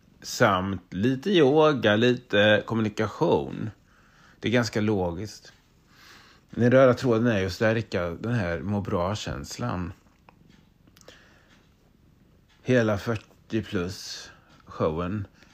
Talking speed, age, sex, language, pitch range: 100 wpm, 30-49, male, Swedish, 95-120 Hz